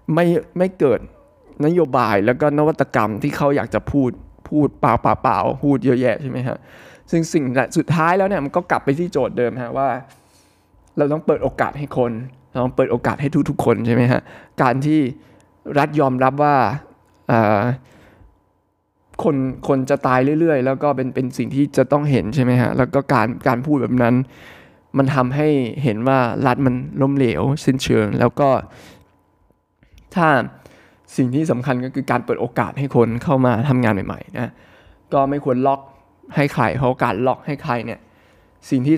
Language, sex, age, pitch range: Thai, male, 20-39, 120-145 Hz